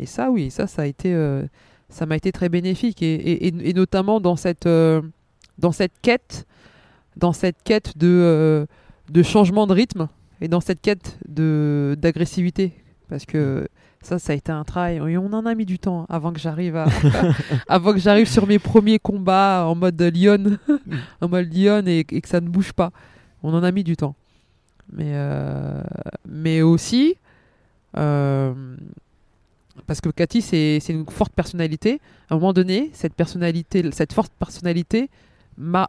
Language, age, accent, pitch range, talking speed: French, 20-39, French, 155-195 Hz, 180 wpm